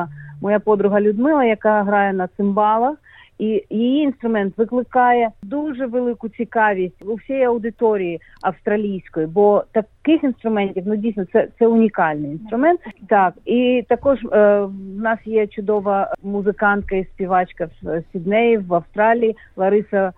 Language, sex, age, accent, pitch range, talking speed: Ukrainian, female, 40-59, native, 190-230 Hz, 130 wpm